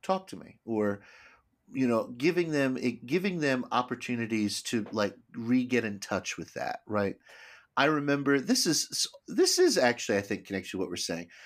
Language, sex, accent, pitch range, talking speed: English, male, American, 100-130 Hz, 180 wpm